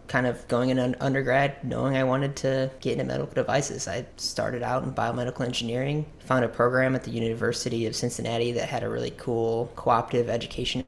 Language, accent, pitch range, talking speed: English, American, 120-130 Hz, 190 wpm